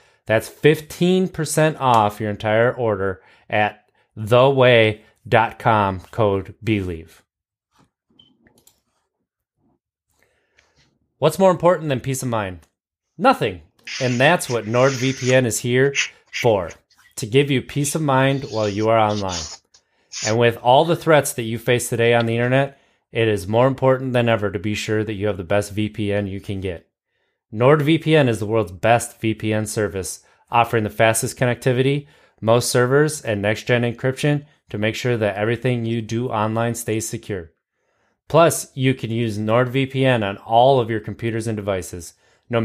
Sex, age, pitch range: male, 30-49, 105-130 Hz